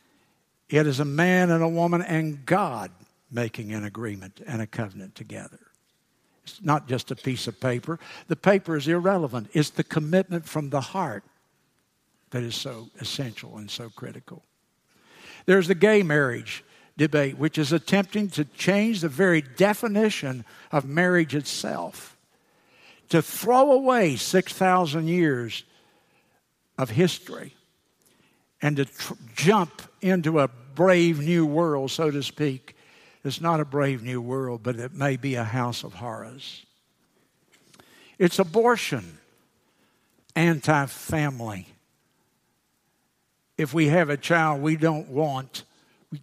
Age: 60-79